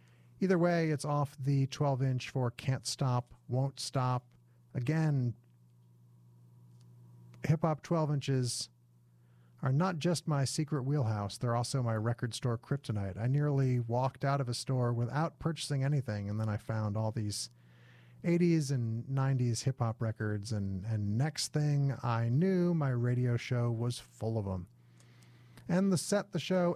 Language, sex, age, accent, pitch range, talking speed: English, male, 40-59, American, 110-150 Hz, 145 wpm